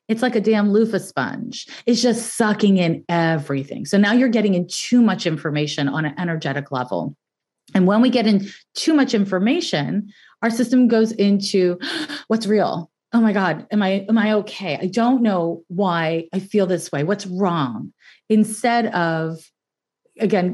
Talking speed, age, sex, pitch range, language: 170 wpm, 30-49, female, 180-230 Hz, English